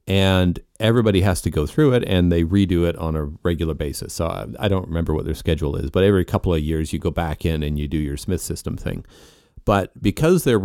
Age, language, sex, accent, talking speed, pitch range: 40-59, English, male, American, 235 wpm, 80-100 Hz